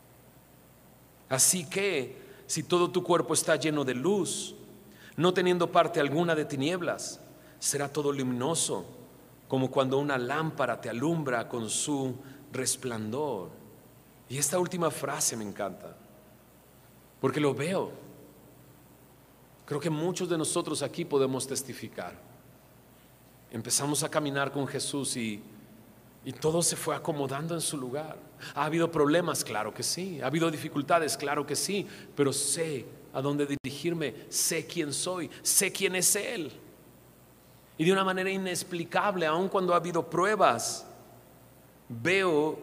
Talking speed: 130 wpm